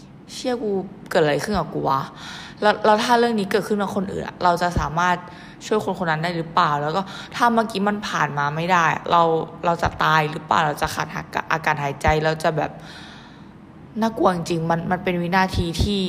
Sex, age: female, 20-39